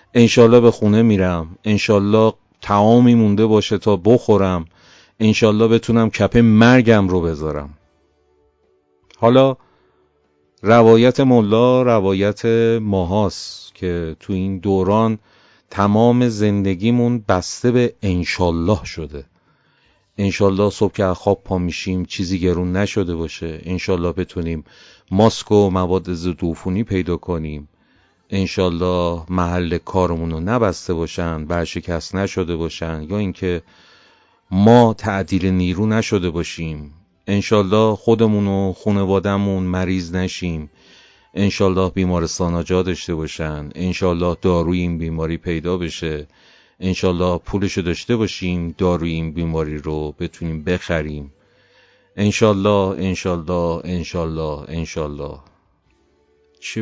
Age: 40-59